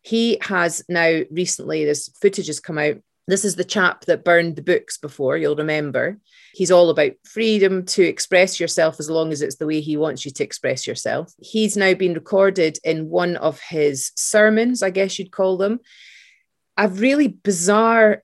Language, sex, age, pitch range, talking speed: English, female, 30-49, 160-200 Hz, 185 wpm